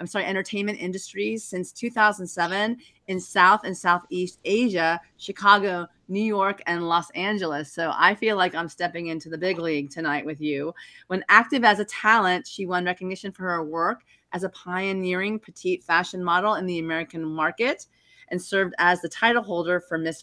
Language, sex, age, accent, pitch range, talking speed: English, female, 30-49, American, 165-200 Hz, 175 wpm